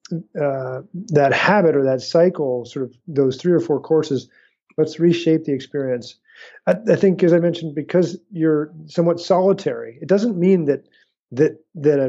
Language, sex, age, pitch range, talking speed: English, male, 40-59, 135-165 Hz, 170 wpm